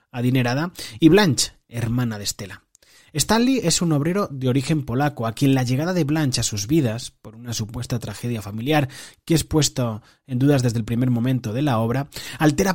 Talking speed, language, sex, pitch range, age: 190 wpm, Spanish, male, 120-155 Hz, 30-49